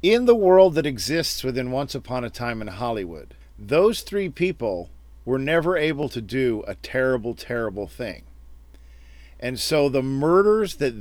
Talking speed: 160 wpm